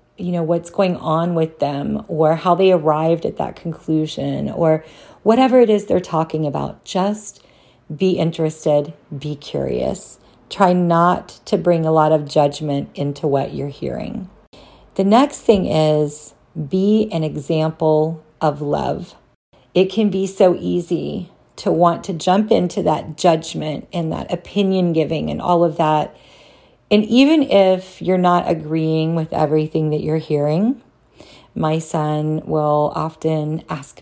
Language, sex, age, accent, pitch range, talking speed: English, female, 40-59, American, 155-195 Hz, 145 wpm